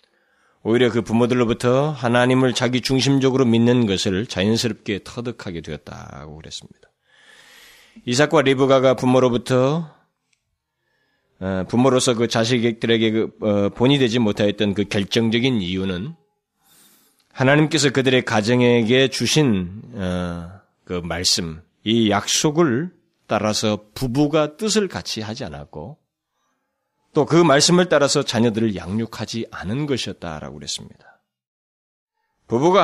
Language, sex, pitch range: Korean, male, 110-155 Hz